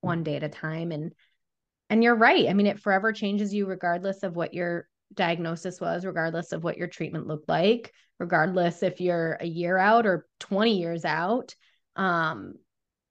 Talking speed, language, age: 180 wpm, English, 20-39